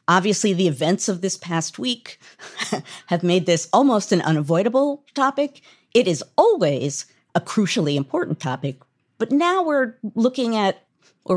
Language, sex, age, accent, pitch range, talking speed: English, female, 50-69, American, 155-220 Hz, 145 wpm